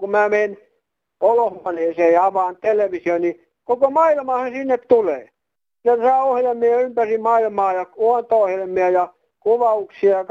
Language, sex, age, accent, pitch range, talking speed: Finnish, male, 60-79, native, 170-210 Hz, 120 wpm